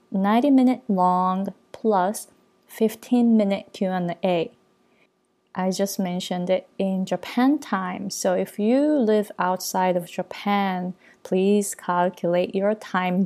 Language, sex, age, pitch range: Japanese, female, 20-39, 185-225 Hz